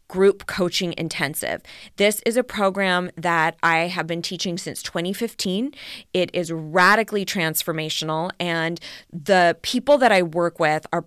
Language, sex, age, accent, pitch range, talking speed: English, female, 20-39, American, 170-210 Hz, 140 wpm